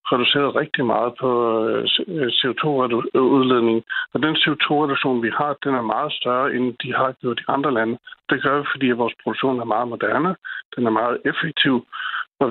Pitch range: 120-145 Hz